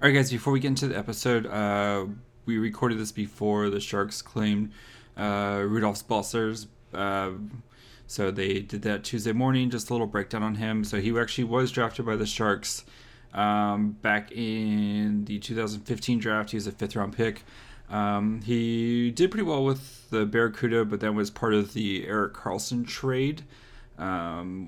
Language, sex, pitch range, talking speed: English, male, 105-120 Hz, 170 wpm